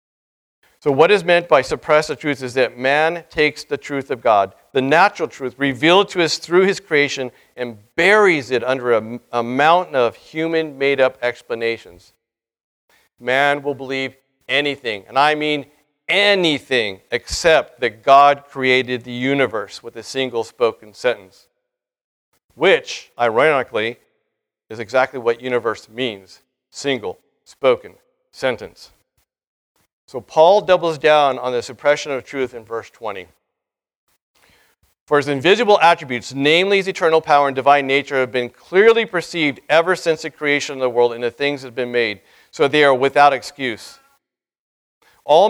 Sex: male